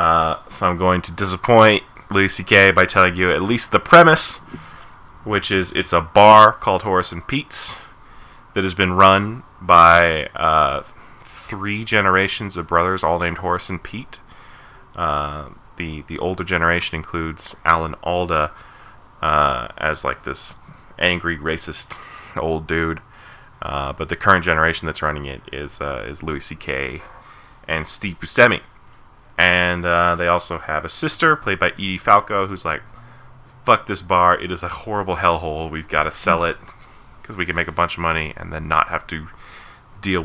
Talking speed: 165 wpm